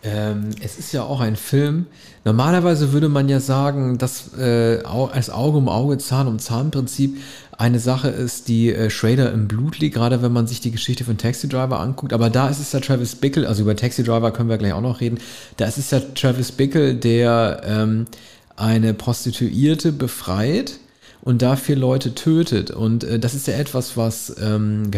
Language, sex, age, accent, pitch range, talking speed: German, male, 40-59, German, 120-140 Hz, 190 wpm